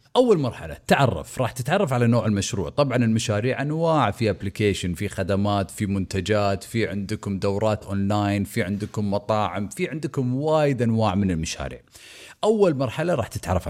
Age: 30-49